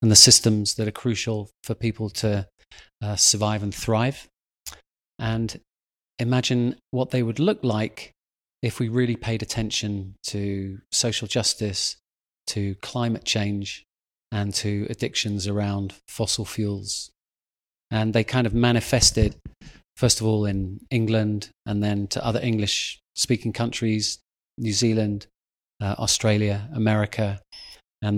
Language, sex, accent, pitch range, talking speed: English, male, British, 100-120 Hz, 125 wpm